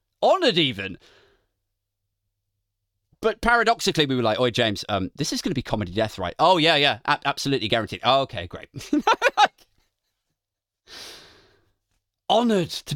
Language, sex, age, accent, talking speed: English, male, 30-49, British, 130 wpm